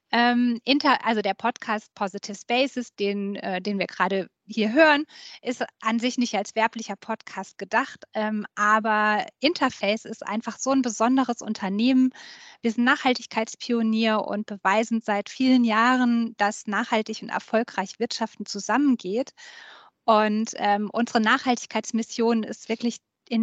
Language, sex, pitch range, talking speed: German, female, 215-255 Hz, 120 wpm